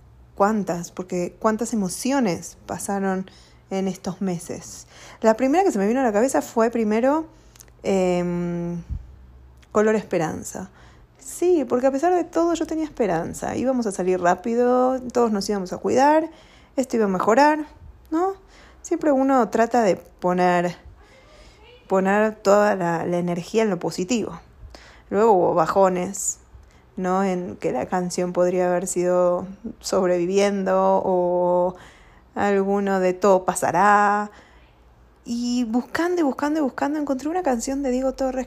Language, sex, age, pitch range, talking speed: Spanish, female, 20-39, 180-245 Hz, 135 wpm